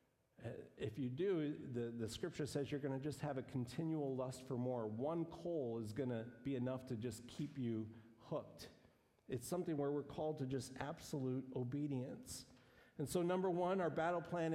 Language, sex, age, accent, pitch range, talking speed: English, male, 50-69, American, 120-160 Hz, 185 wpm